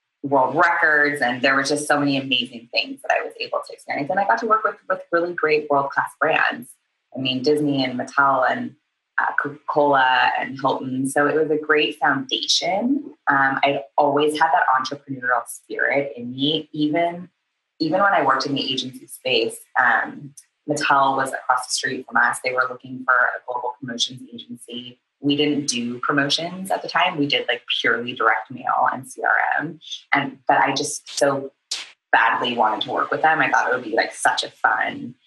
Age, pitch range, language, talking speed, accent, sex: 20-39, 130-160 Hz, English, 190 wpm, American, female